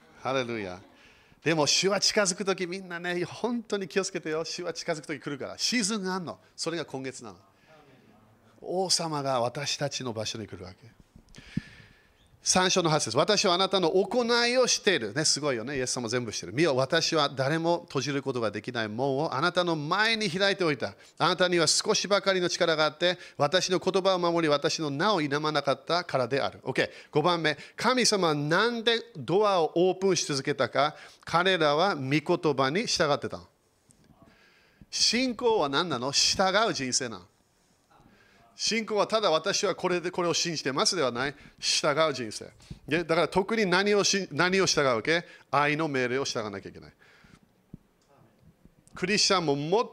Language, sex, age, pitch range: Japanese, male, 40-59, 140-195 Hz